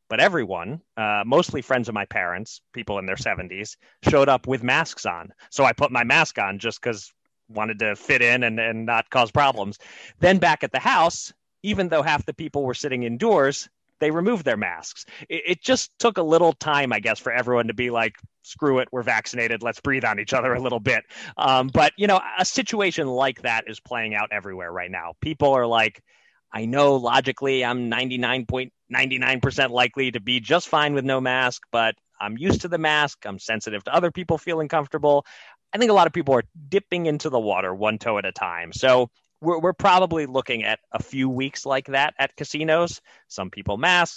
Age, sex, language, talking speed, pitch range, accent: 30-49, male, English, 210 wpm, 115-155 Hz, American